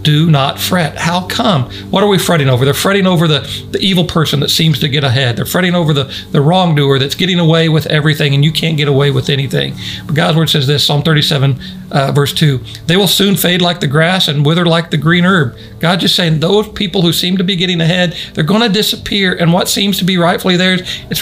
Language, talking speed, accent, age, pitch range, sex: English, 245 wpm, American, 50-69, 130-165 Hz, male